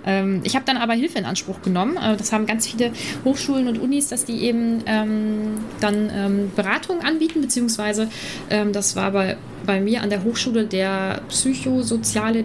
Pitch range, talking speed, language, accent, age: 190-235 Hz, 175 wpm, German, German, 20-39